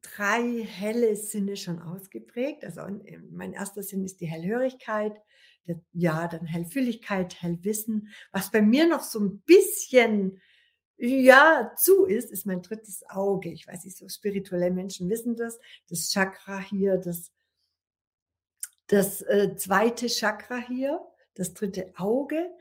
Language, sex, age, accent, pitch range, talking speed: German, female, 60-79, German, 185-225 Hz, 130 wpm